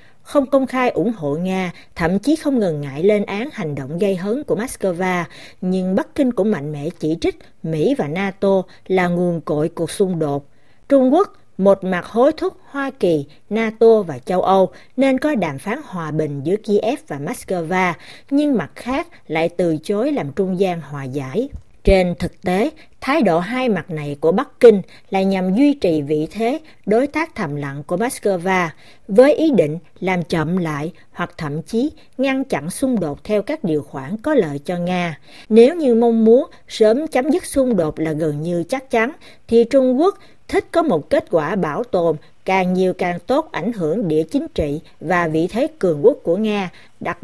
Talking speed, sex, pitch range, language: 195 wpm, female, 160-245 Hz, Vietnamese